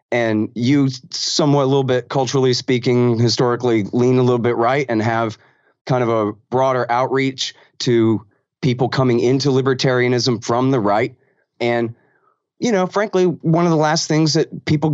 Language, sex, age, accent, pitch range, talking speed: English, male, 30-49, American, 115-140 Hz, 160 wpm